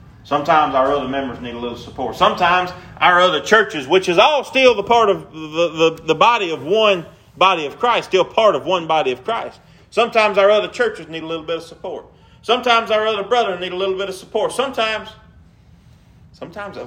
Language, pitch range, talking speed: English, 110-175 Hz, 200 wpm